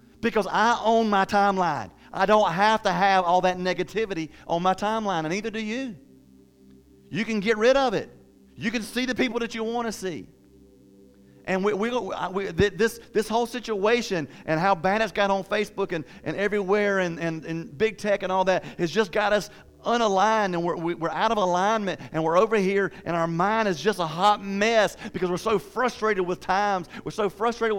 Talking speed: 205 wpm